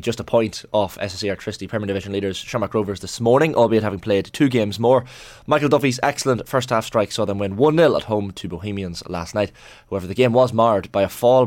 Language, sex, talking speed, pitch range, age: English, male, 225 wpm, 95-120 Hz, 20-39